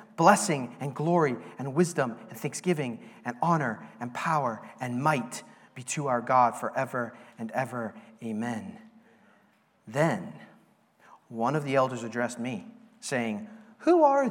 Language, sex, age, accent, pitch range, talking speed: English, male, 40-59, American, 125-175 Hz, 130 wpm